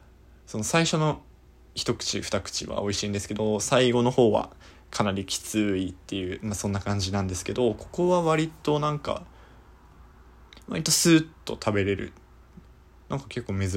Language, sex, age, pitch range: Japanese, male, 20-39, 95-125 Hz